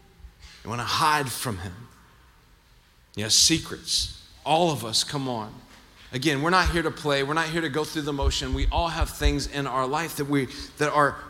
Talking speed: 195 wpm